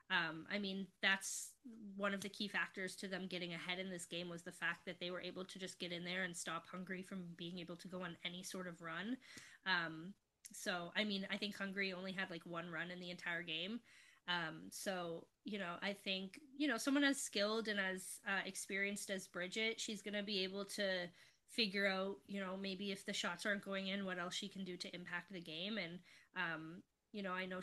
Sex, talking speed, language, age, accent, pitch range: female, 230 wpm, English, 20-39, American, 175-200 Hz